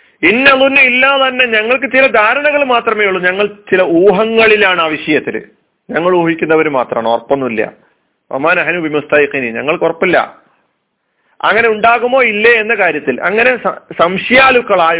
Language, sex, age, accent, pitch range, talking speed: Malayalam, male, 40-59, native, 150-225 Hz, 110 wpm